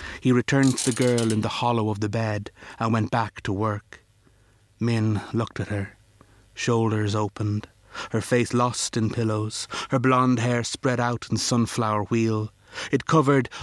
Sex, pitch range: male, 105-115 Hz